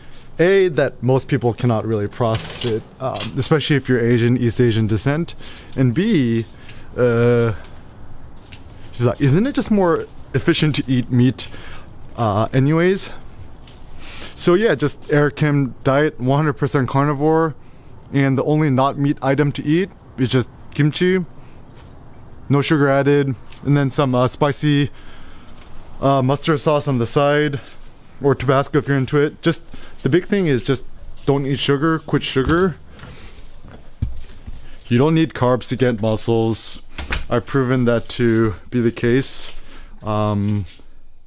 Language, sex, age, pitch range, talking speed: English, male, 20-39, 115-145 Hz, 140 wpm